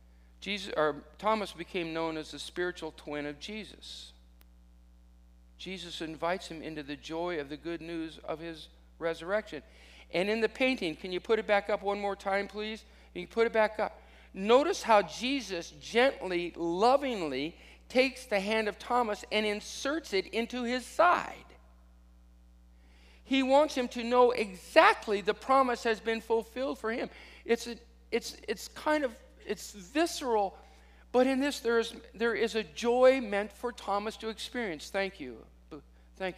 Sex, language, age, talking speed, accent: male, English, 50-69, 160 wpm, American